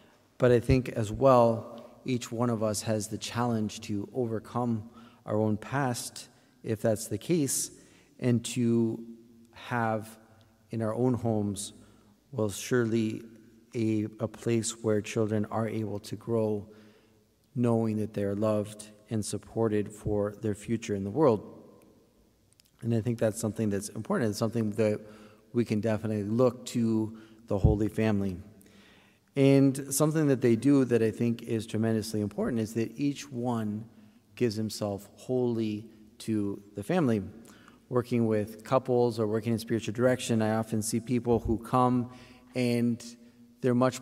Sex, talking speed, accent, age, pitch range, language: male, 145 wpm, American, 40-59, 105-120 Hz, English